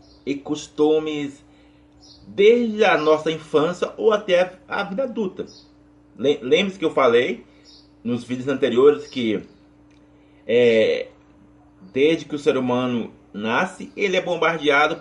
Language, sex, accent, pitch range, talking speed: Portuguese, male, Brazilian, 115-175 Hz, 115 wpm